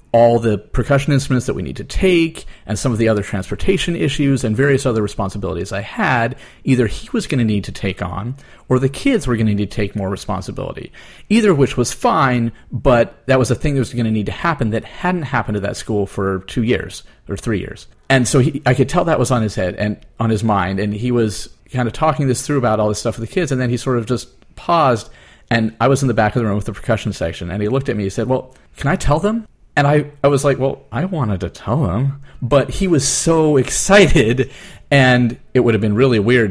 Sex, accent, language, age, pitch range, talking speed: male, American, English, 30-49, 105-135 Hz, 255 wpm